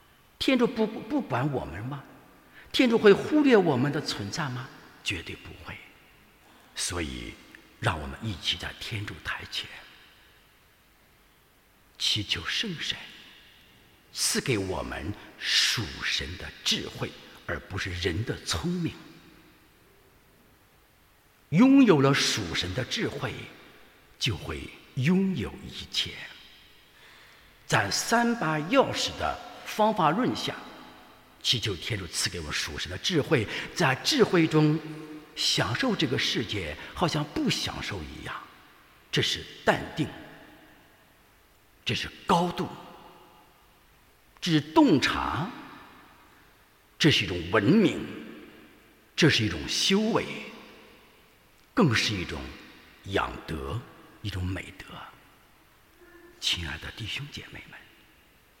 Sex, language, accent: male, English, Chinese